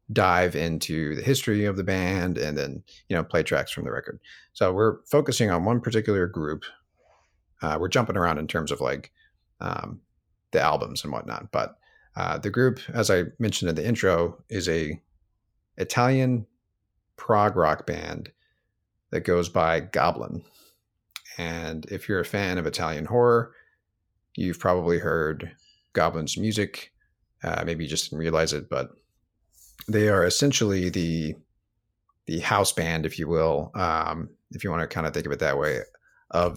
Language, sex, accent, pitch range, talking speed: English, male, American, 80-105 Hz, 165 wpm